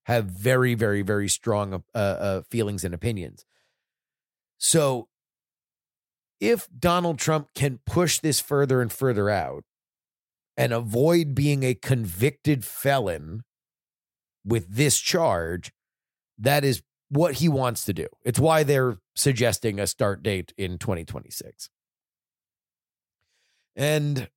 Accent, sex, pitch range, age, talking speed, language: American, male, 100-140 Hz, 30-49, 115 wpm, English